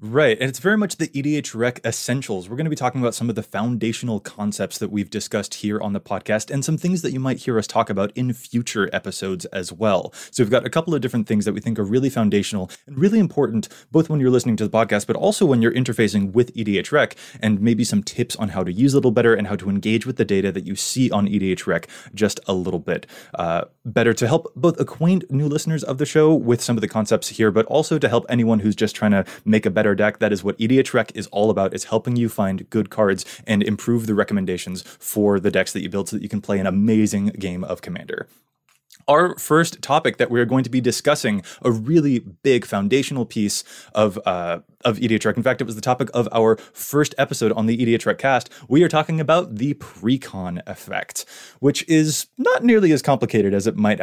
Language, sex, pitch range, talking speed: English, male, 105-135 Hz, 235 wpm